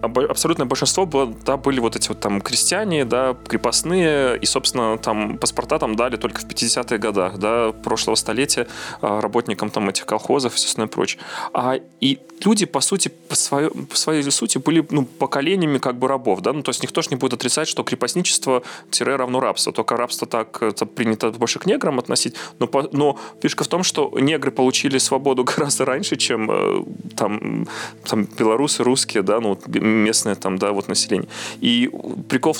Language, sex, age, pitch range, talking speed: Russian, male, 20-39, 115-145 Hz, 185 wpm